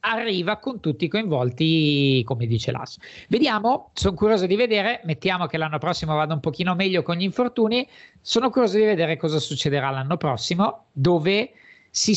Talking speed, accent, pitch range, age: 170 wpm, native, 140-190 Hz, 50-69